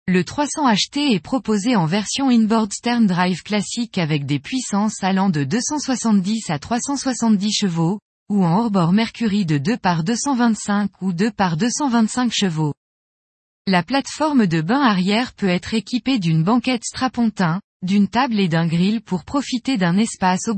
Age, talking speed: 20-39, 155 wpm